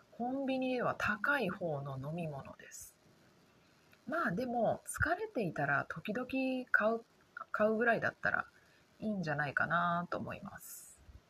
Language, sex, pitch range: Japanese, female, 165-230 Hz